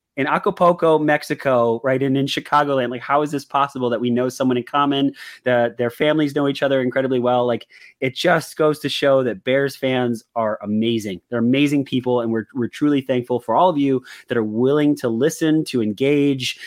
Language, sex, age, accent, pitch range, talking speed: English, male, 30-49, American, 120-150 Hz, 200 wpm